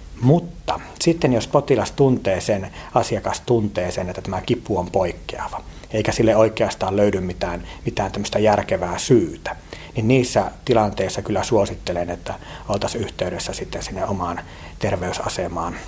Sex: male